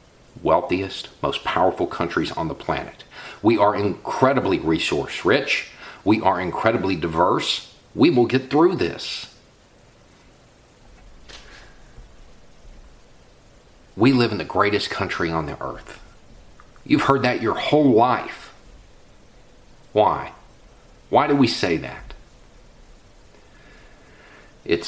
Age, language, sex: 40-59, English, male